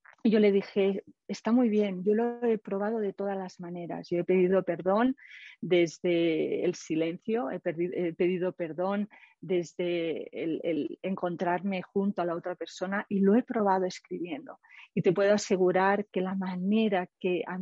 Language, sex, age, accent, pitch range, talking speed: Spanish, female, 40-59, Spanish, 180-210 Hz, 165 wpm